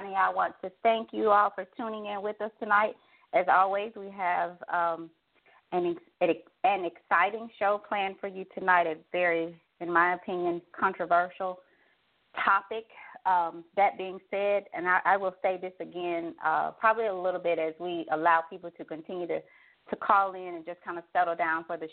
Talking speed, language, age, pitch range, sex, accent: 180 wpm, English, 30-49, 170-200 Hz, female, American